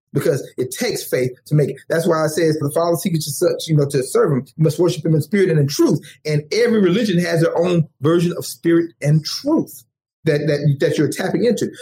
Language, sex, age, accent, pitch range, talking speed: English, male, 30-49, American, 150-205 Hz, 240 wpm